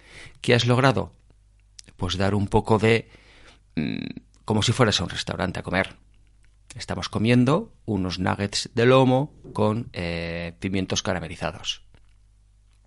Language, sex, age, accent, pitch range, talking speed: Spanish, male, 40-59, Spanish, 95-115 Hz, 120 wpm